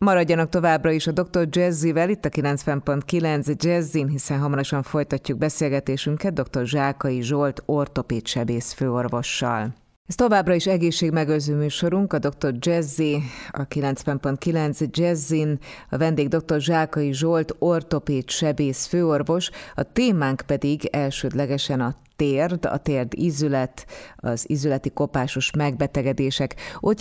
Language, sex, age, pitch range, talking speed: Hungarian, female, 30-49, 135-160 Hz, 120 wpm